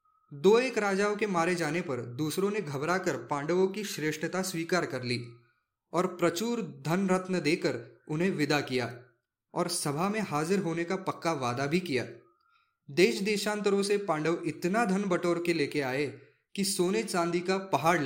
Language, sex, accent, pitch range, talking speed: English, male, Indian, 140-200 Hz, 160 wpm